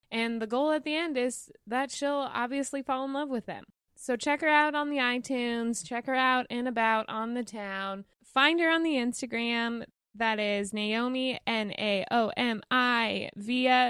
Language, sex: English, female